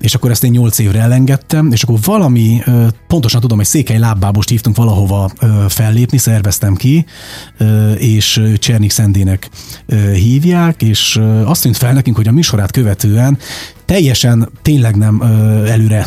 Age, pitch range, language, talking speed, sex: 30-49, 105-125 Hz, Hungarian, 140 wpm, male